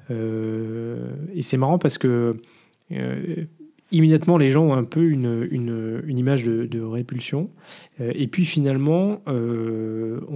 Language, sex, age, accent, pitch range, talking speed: French, male, 20-39, French, 110-145 Hz, 145 wpm